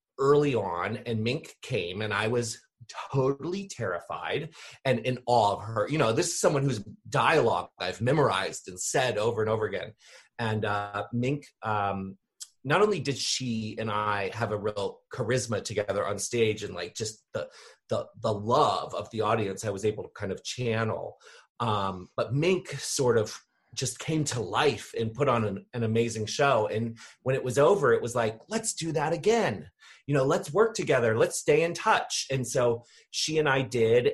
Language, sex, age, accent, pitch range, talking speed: English, male, 30-49, American, 105-135 Hz, 190 wpm